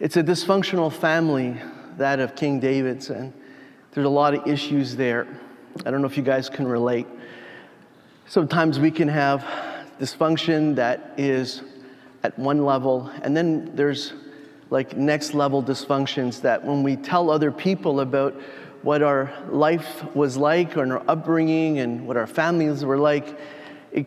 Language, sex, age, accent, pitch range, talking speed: English, male, 30-49, American, 140-160 Hz, 155 wpm